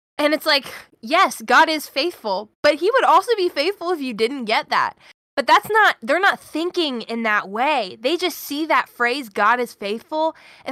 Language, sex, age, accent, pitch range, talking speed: English, female, 10-29, American, 210-280 Hz, 200 wpm